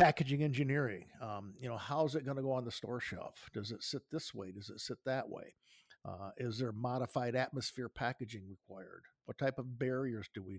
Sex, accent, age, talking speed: male, American, 50-69, 210 wpm